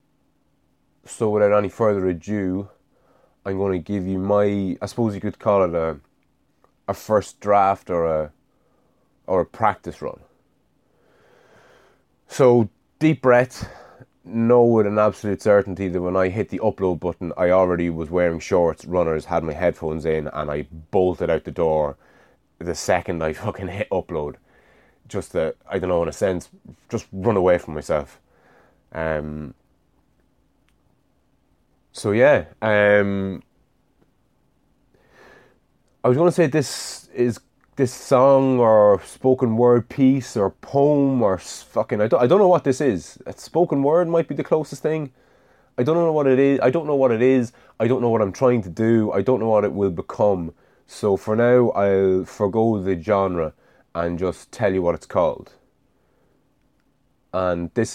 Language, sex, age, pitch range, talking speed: English, male, 20-39, 90-120 Hz, 165 wpm